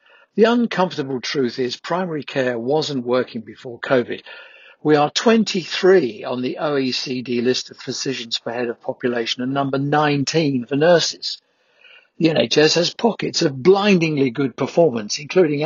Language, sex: English, male